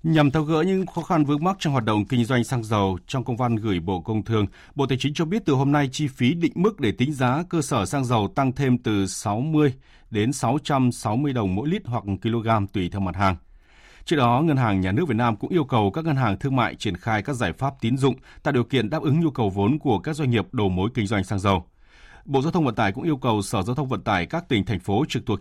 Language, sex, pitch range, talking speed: Vietnamese, male, 100-140 Hz, 275 wpm